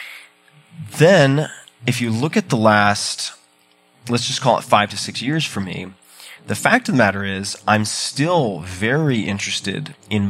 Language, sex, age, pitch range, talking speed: English, male, 30-49, 95-115 Hz, 165 wpm